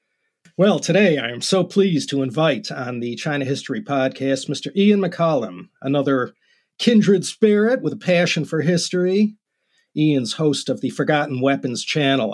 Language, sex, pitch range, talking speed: English, male, 135-185 Hz, 150 wpm